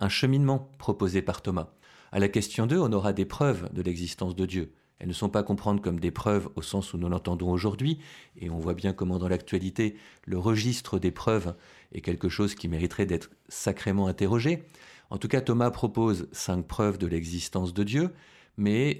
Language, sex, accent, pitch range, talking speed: French, male, French, 95-120 Hz, 200 wpm